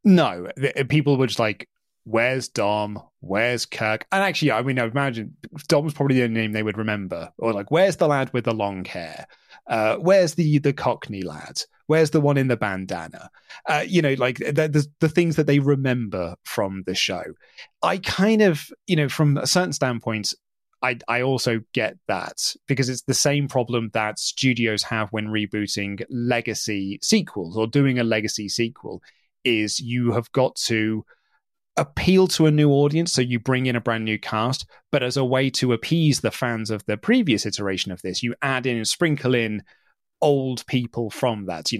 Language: English